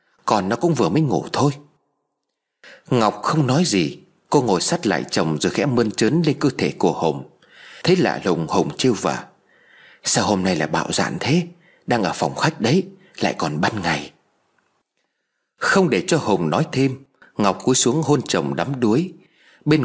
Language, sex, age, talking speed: Vietnamese, male, 30-49, 185 wpm